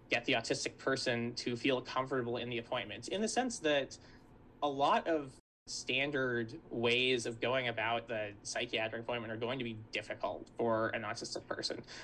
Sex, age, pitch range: male, 20-39, 120-140 Hz